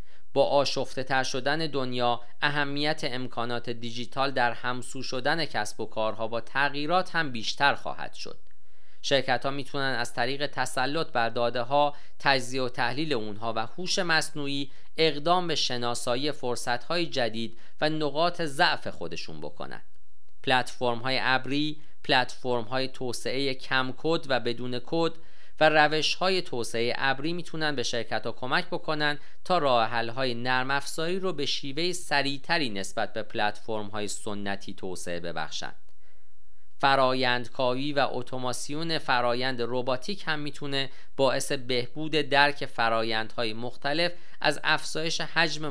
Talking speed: 125 wpm